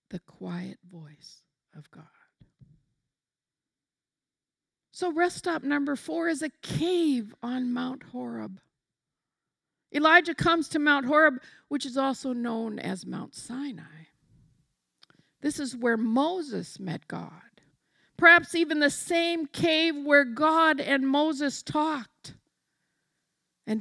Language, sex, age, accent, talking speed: English, female, 50-69, American, 115 wpm